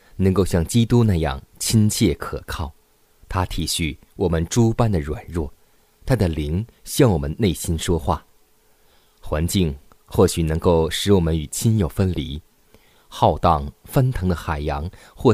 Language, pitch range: Chinese, 80-105 Hz